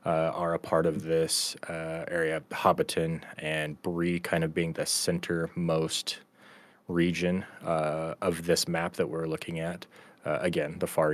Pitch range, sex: 80-90 Hz, male